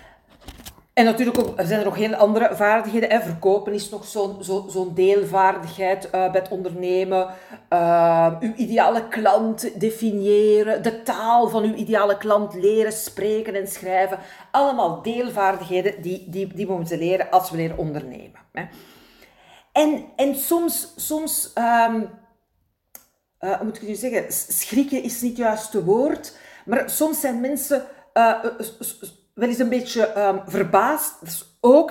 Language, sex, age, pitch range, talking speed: Dutch, female, 40-59, 195-250 Hz, 155 wpm